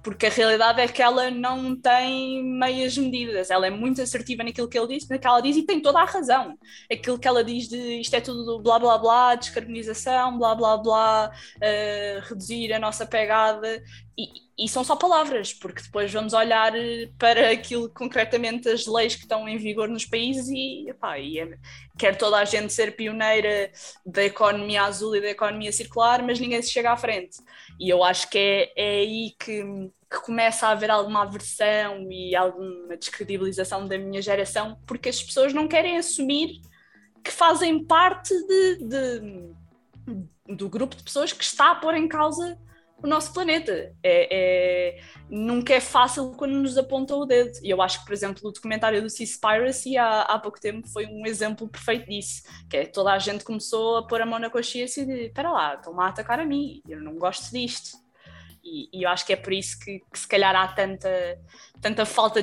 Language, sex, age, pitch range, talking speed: Portuguese, female, 20-39, 195-245 Hz, 195 wpm